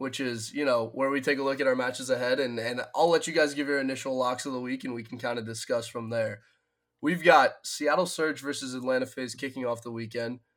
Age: 20-39